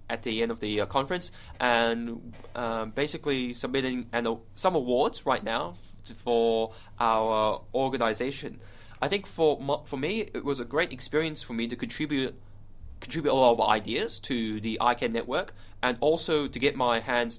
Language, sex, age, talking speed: English, male, 10-29, 175 wpm